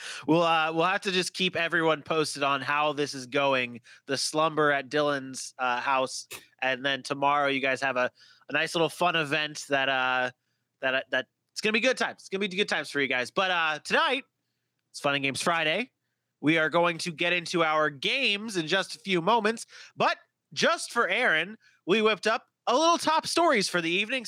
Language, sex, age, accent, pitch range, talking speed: English, male, 30-49, American, 155-215 Hz, 210 wpm